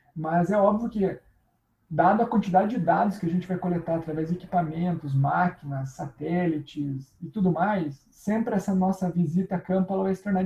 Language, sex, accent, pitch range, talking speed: Portuguese, male, Brazilian, 170-205 Hz, 185 wpm